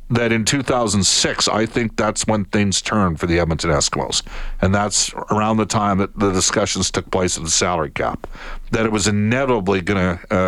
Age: 50-69